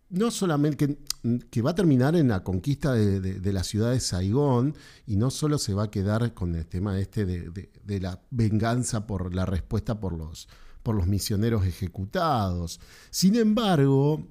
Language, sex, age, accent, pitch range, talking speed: Spanish, male, 40-59, Argentinian, 95-125 Hz, 175 wpm